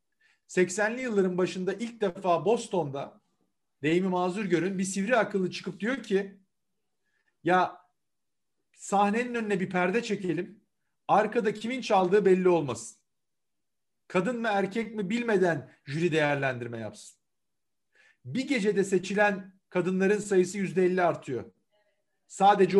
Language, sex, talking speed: Turkish, male, 110 wpm